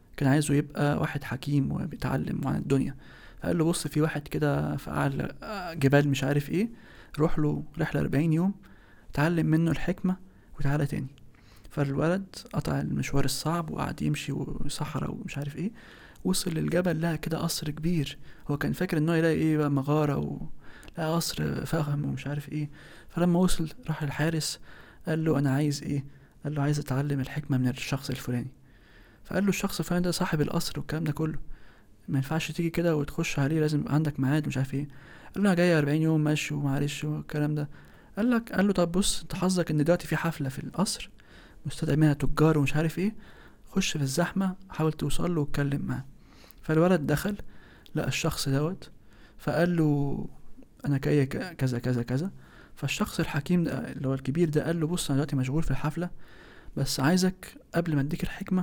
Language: Arabic